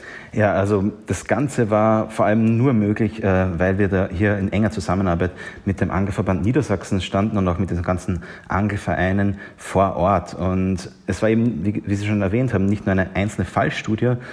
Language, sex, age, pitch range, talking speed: German, male, 30-49, 90-110 Hz, 180 wpm